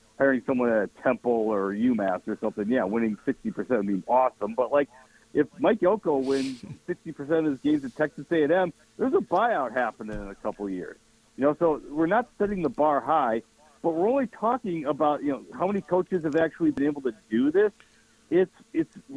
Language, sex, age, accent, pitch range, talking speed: English, male, 50-69, American, 130-200 Hz, 195 wpm